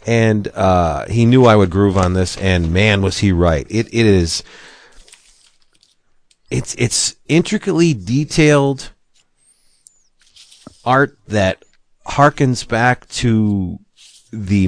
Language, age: English, 40-59